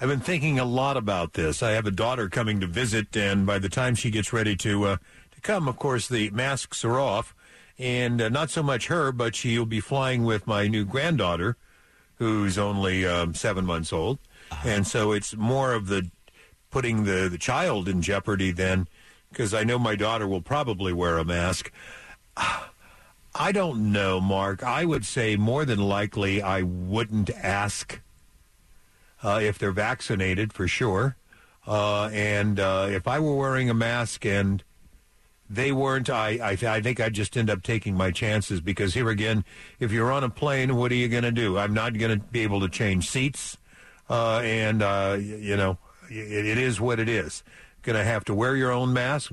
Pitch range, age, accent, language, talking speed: 100-120 Hz, 50-69, American, English, 190 wpm